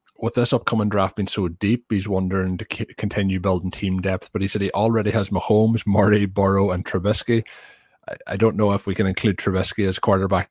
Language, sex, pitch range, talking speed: English, male, 95-110 Hz, 210 wpm